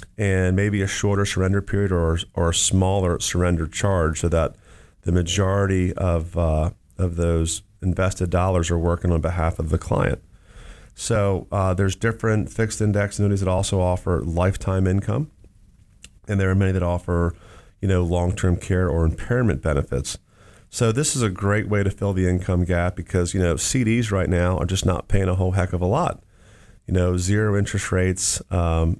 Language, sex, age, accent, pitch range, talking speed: English, male, 30-49, American, 90-100 Hz, 180 wpm